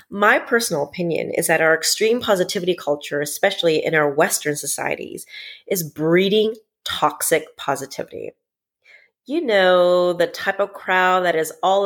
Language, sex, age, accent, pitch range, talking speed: English, female, 30-49, American, 170-230 Hz, 135 wpm